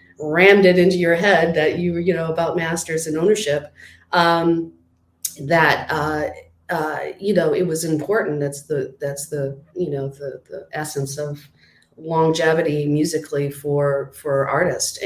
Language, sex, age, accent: English, female, 40-59, American